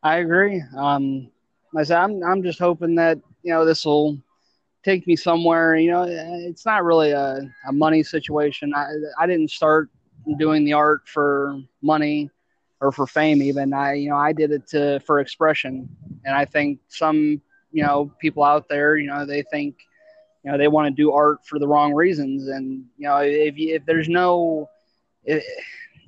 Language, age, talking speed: English, 20-39, 185 wpm